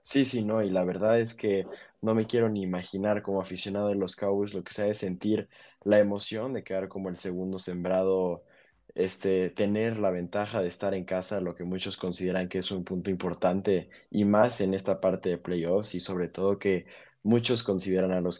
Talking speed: 205 wpm